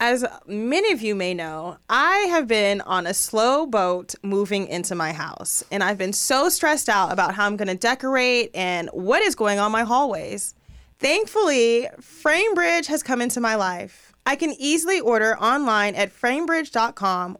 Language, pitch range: English, 195-290 Hz